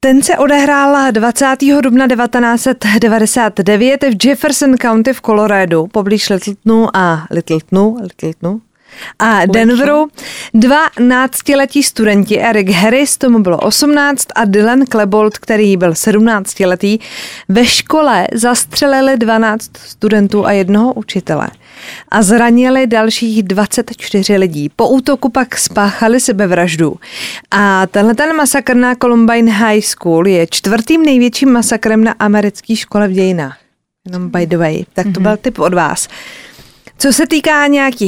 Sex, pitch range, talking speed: female, 200-255 Hz, 125 wpm